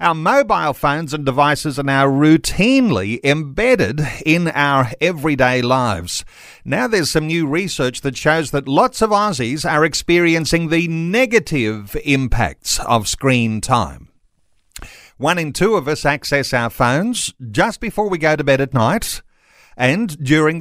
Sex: male